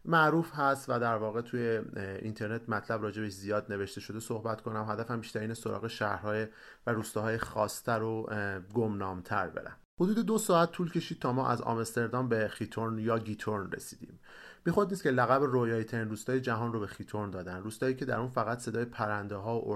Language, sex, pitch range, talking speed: Persian, male, 105-125 Hz, 180 wpm